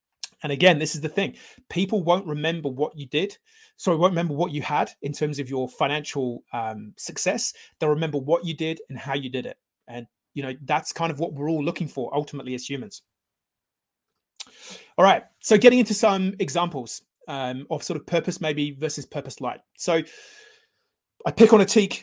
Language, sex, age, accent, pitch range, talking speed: English, male, 30-49, British, 140-175 Hz, 195 wpm